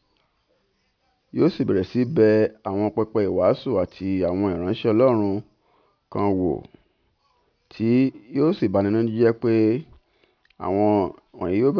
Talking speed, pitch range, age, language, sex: 130 wpm, 100-120 Hz, 50-69, English, male